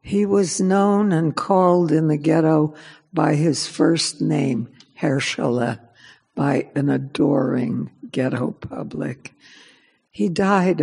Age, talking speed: 60-79, 110 wpm